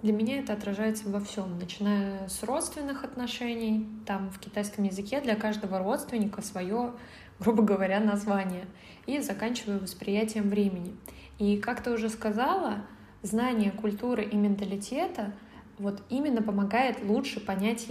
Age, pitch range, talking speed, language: 20-39, 200-235 Hz, 130 wpm, Russian